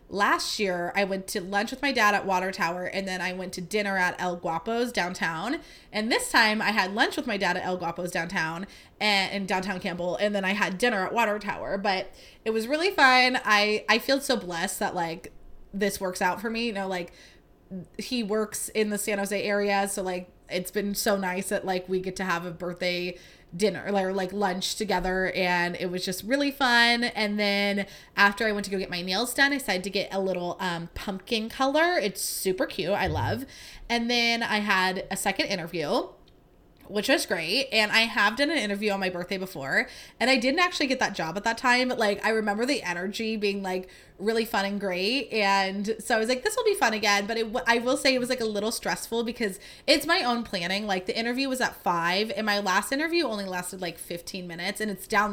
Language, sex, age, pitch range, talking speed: English, female, 20-39, 185-230 Hz, 225 wpm